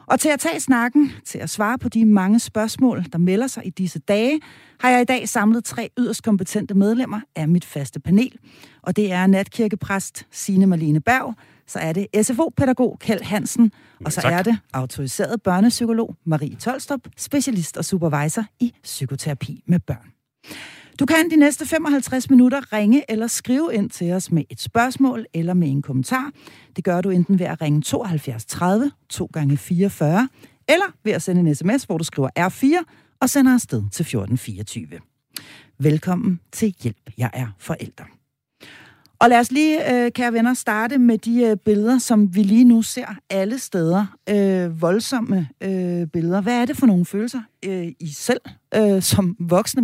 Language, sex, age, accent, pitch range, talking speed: Danish, female, 40-59, native, 170-235 Hz, 170 wpm